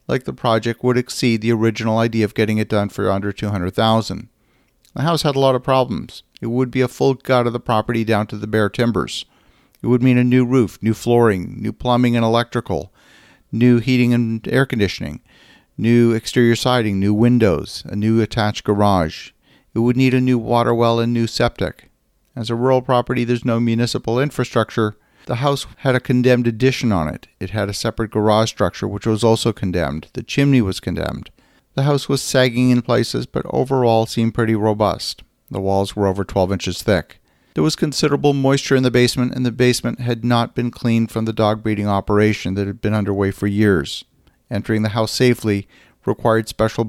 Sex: male